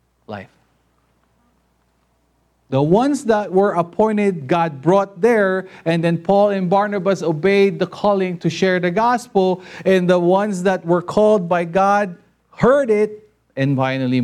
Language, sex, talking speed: English, male, 140 wpm